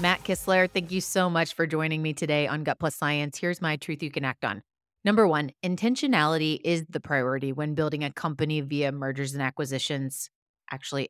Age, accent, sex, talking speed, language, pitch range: 30-49, American, female, 195 wpm, English, 145-180 Hz